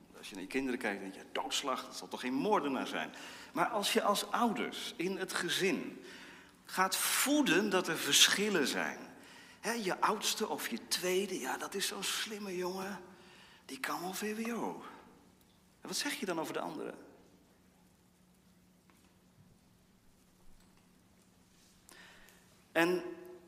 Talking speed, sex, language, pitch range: 135 wpm, male, Dutch, 125-205 Hz